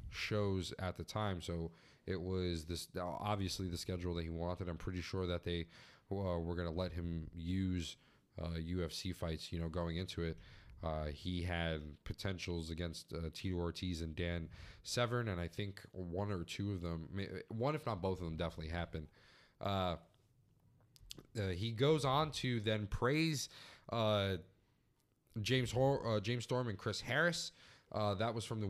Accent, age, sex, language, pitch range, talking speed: American, 20-39, male, English, 90-110 Hz, 170 wpm